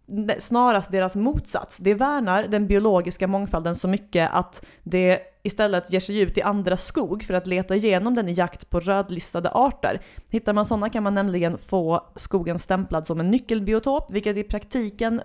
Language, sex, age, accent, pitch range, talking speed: English, female, 30-49, Swedish, 170-215 Hz, 175 wpm